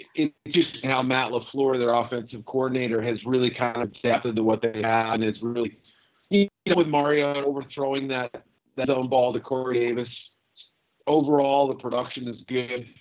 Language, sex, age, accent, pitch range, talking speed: English, male, 50-69, American, 120-145 Hz, 170 wpm